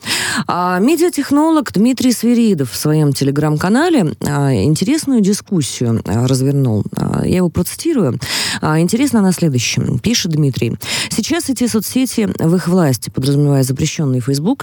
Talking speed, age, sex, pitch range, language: 105 wpm, 20-39, female, 140-225 Hz, Russian